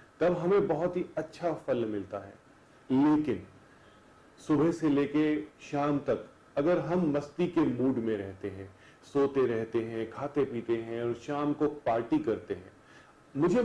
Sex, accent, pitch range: male, native, 120-180 Hz